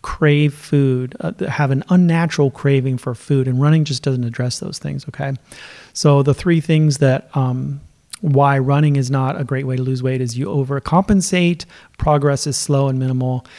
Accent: American